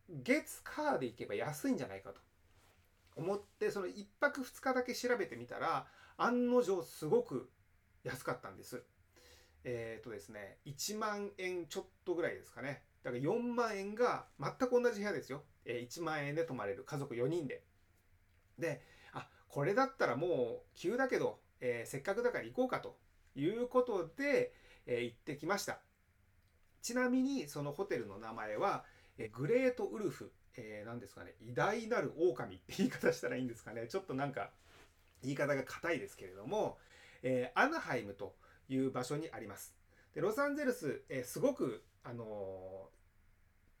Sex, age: male, 30-49